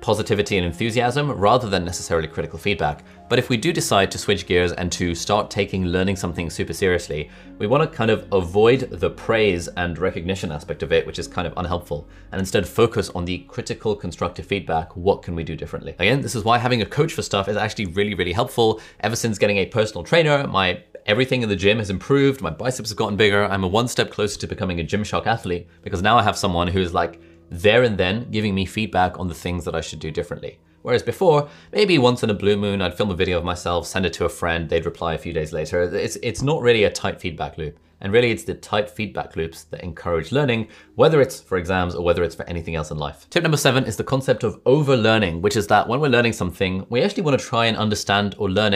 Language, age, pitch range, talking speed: English, 20-39, 90-115 Hz, 240 wpm